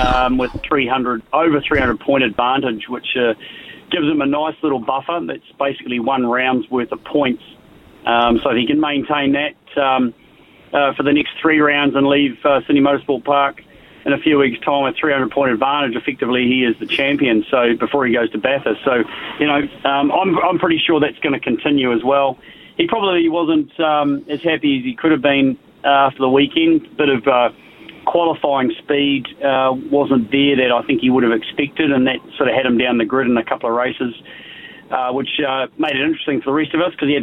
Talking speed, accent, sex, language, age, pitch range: 215 wpm, Australian, male, English, 30-49, 125-145 Hz